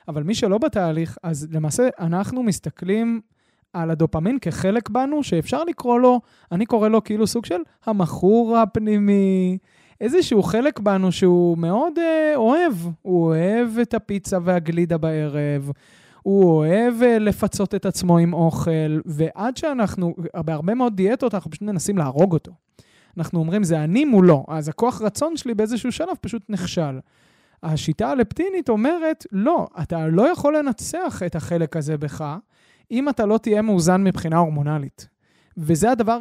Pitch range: 165-220 Hz